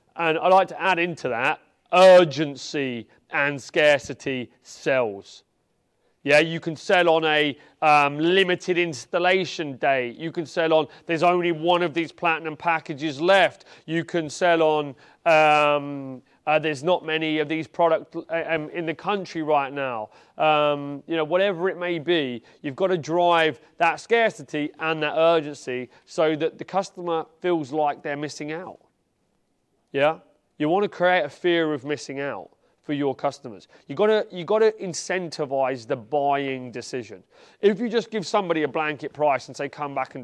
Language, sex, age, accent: English, male, 30-49, British